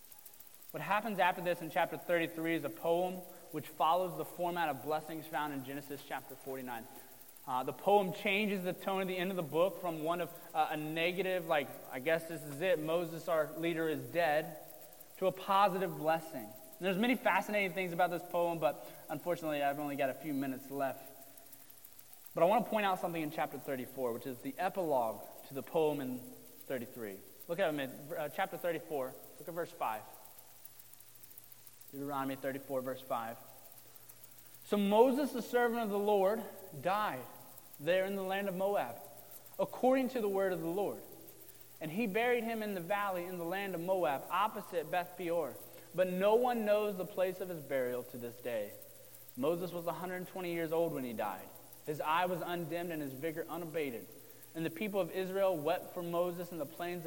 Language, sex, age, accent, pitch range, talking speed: English, male, 20-39, American, 145-190 Hz, 185 wpm